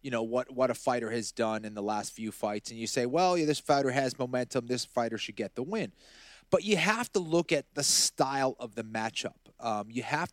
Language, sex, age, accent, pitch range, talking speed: English, male, 30-49, American, 115-145 Hz, 245 wpm